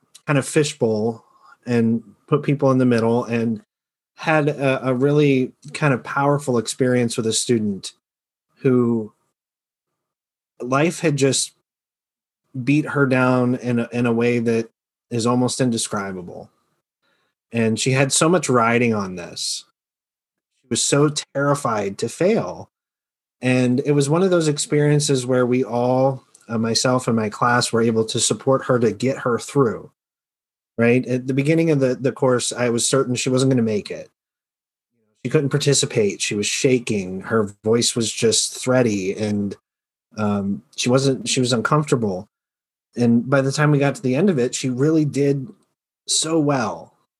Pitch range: 120-145 Hz